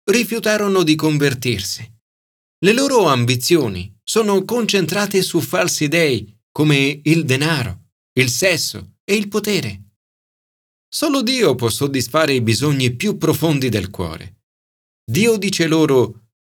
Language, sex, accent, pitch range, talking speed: Italian, male, native, 105-155 Hz, 115 wpm